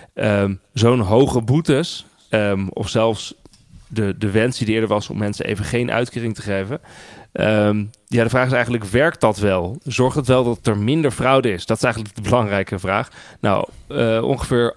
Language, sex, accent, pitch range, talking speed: Dutch, male, Dutch, 105-125 Hz, 185 wpm